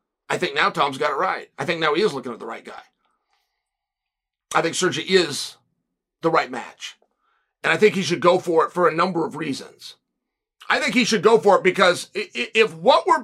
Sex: male